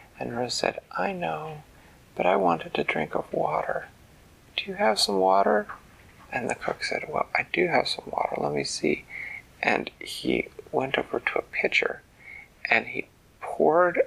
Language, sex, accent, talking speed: English, male, American, 170 wpm